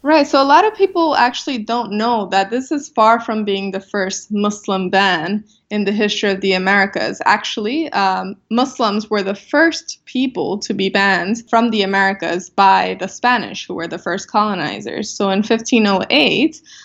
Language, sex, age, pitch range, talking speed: English, female, 20-39, 195-240 Hz, 175 wpm